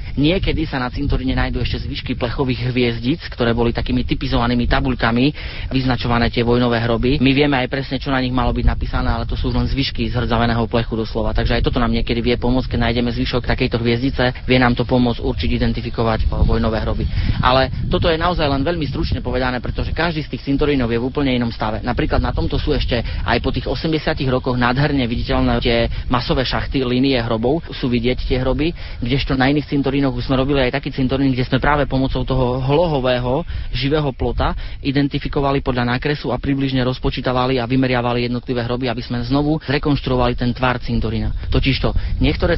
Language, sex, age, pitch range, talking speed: Slovak, male, 30-49, 120-135 Hz, 185 wpm